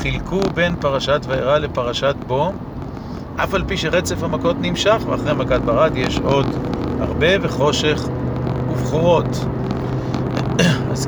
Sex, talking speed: male, 115 wpm